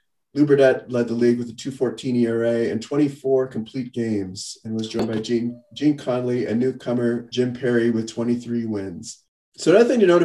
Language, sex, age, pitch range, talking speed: English, male, 30-49, 110-140 Hz, 180 wpm